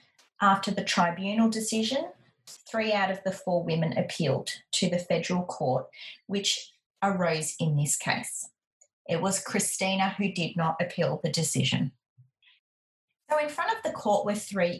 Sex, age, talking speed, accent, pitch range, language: female, 30-49, 150 wpm, Australian, 170-235 Hz, English